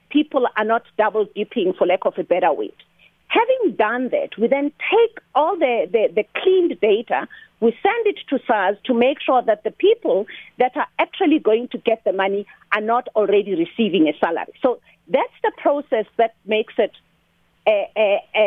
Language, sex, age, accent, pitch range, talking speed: English, female, 40-59, South African, 215-300 Hz, 185 wpm